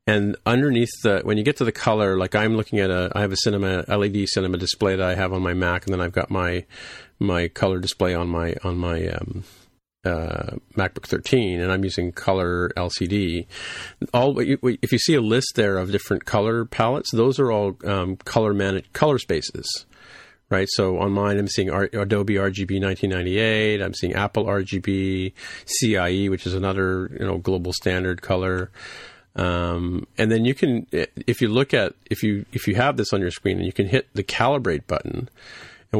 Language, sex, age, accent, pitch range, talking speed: English, male, 50-69, American, 95-110 Hz, 195 wpm